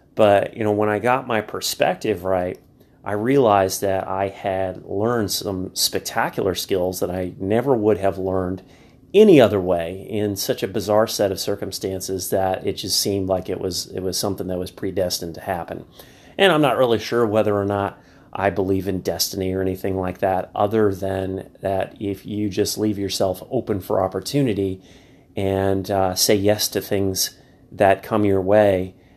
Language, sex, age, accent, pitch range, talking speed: English, male, 30-49, American, 95-110 Hz, 175 wpm